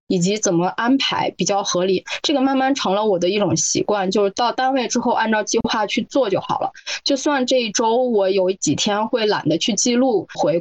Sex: female